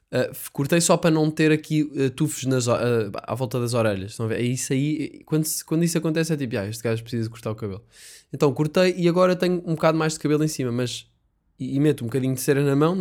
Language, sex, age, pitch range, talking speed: Portuguese, male, 10-29, 115-155 Hz, 265 wpm